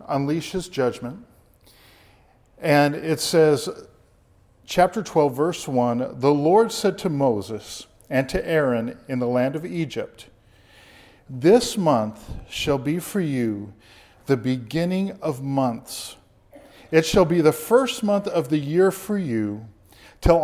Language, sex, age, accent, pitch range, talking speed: English, male, 50-69, American, 125-190 Hz, 130 wpm